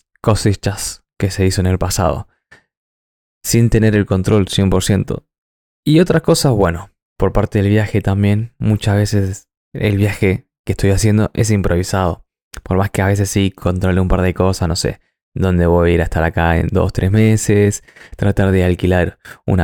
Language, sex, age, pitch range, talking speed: Spanish, male, 20-39, 95-115 Hz, 175 wpm